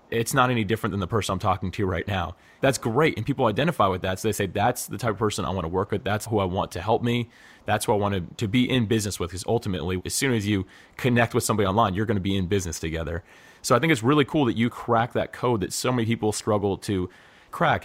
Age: 30-49